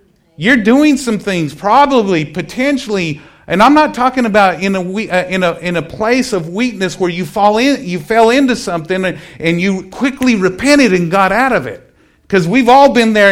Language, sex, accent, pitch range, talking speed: English, male, American, 175-235 Hz, 190 wpm